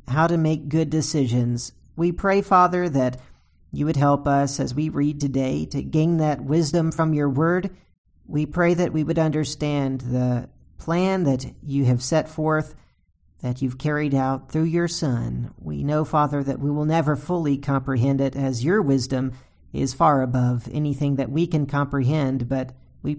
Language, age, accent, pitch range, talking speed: English, 40-59, American, 135-170 Hz, 175 wpm